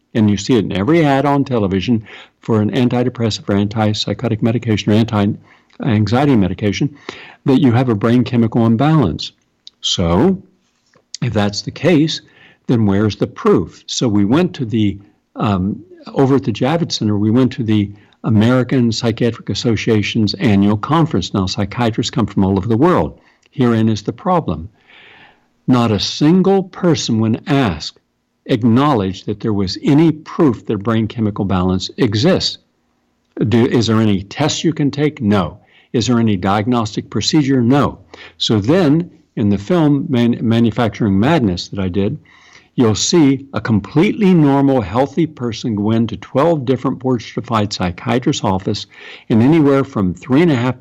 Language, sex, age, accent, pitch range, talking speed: English, male, 60-79, American, 105-135 Hz, 155 wpm